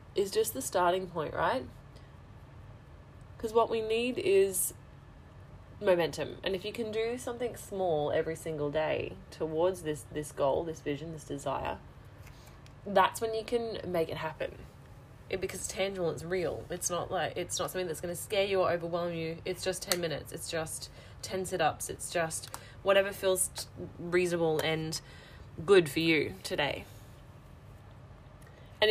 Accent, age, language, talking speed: Australian, 20-39, English, 155 wpm